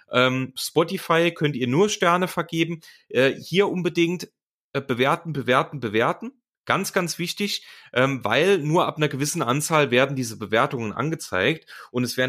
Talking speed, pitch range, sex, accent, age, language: 130 wpm, 120-155 Hz, male, German, 30-49, German